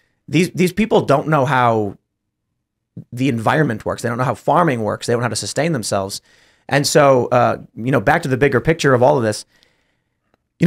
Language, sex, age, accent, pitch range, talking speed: English, male, 30-49, American, 120-150 Hz, 210 wpm